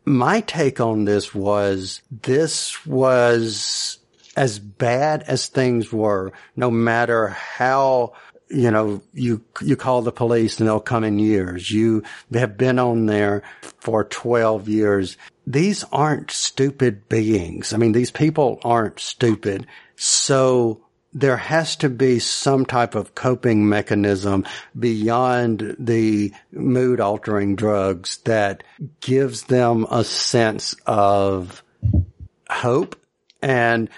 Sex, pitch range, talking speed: male, 105-125 Hz, 120 wpm